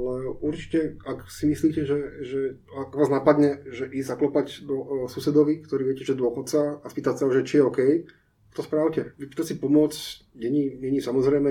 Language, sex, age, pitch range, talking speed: Slovak, male, 20-39, 125-155 Hz, 175 wpm